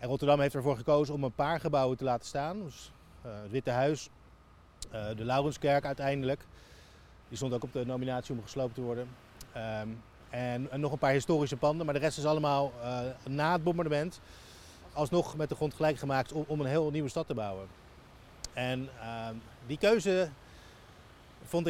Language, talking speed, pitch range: Dutch, 175 wpm, 115-150 Hz